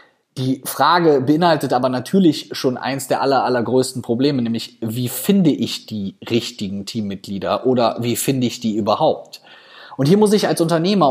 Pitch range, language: 115-160 Hz, German